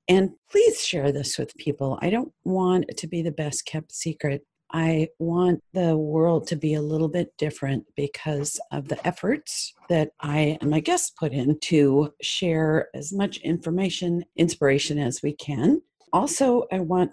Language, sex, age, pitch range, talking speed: English, female, 50-69, 150-185 Hz, 170 wpm